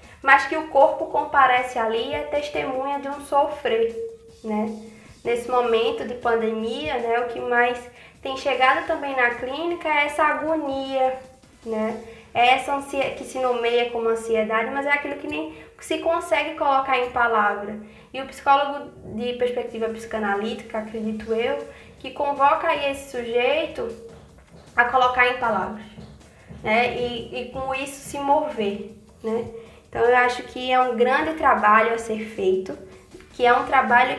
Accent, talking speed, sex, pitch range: Brazilian, 155 wpm, female, 230-280 Hz